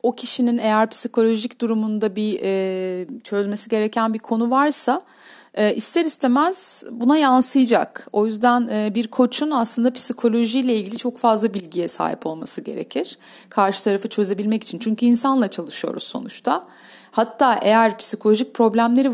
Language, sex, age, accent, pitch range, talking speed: Turkish, female, 40-59, native, 215-260 Hz, 135 wpm